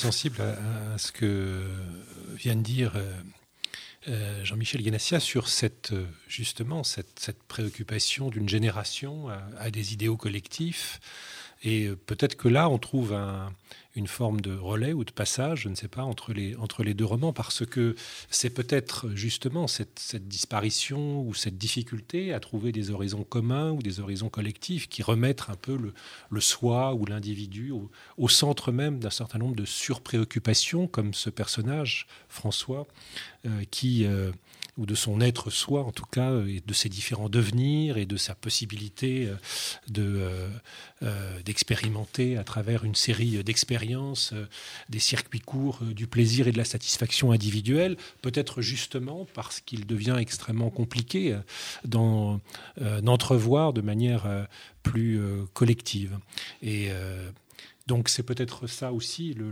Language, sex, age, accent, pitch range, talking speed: French, male, 40-59, French, 105-125 Hz, 145 wpm